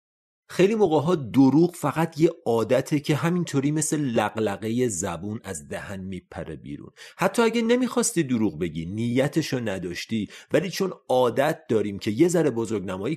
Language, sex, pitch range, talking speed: Persian, male, 105-160 Hz, 140 wpm